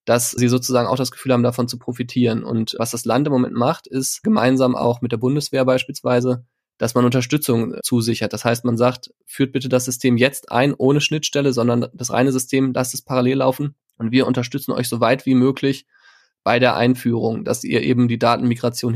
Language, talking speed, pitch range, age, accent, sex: German, 205 wpm, 120-130 Hz, 20-39, German, male